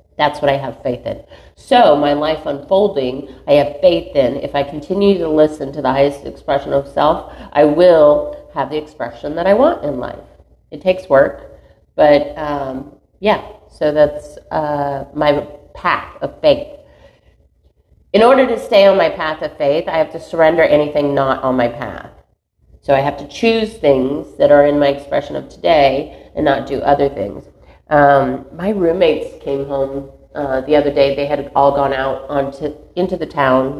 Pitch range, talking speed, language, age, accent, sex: 135-155 Hz, 180 wpm, English, 40-59, American, female